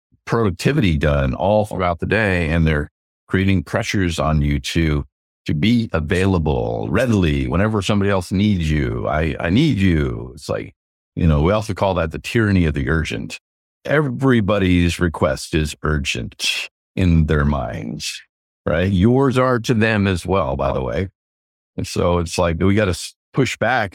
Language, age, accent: English, 50-69, American